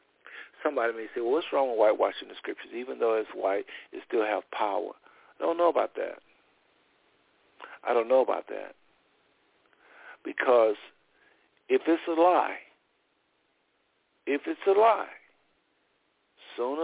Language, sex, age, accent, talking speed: English, male, 60-79, American, 135 wpm